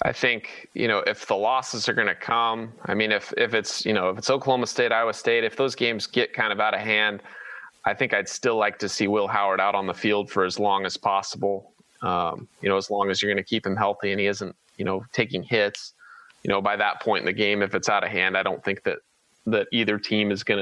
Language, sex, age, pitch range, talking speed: English, male, 20-39, 100-115 Hz, 270 wpm